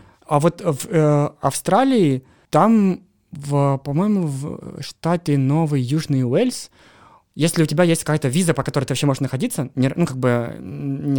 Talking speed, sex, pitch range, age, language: 160 wpm, male, 130-160 Hz, 20-39, Russian